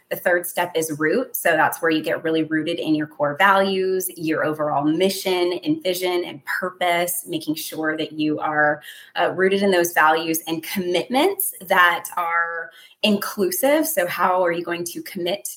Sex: female